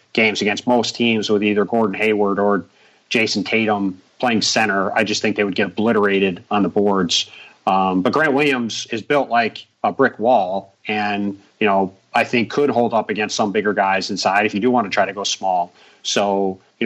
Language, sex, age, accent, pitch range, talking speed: English, male, 30-49, American, 105-130 Hz, 205 wpm